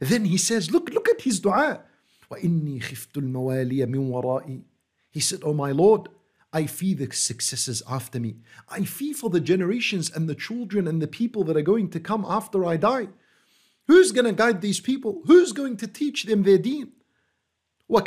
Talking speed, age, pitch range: 175 wpm, 50-69, 160-230 Hz